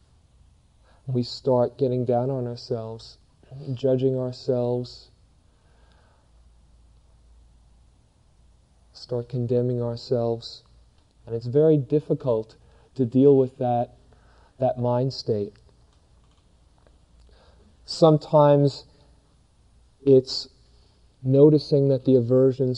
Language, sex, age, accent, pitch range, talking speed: English, male, 40-59, American, 105-130 Hz, 75 wpm